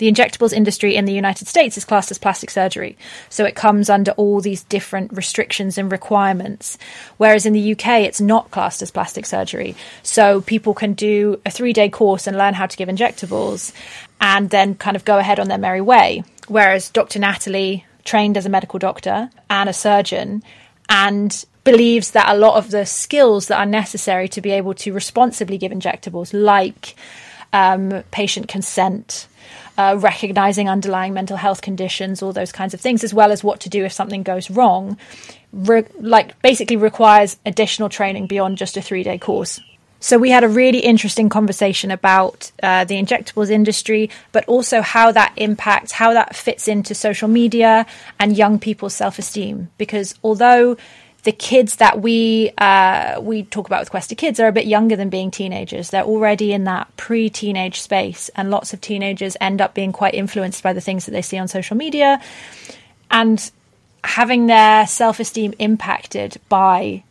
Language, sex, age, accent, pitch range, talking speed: English, female, 20-39, British, 195-220 Hz, 175 wpm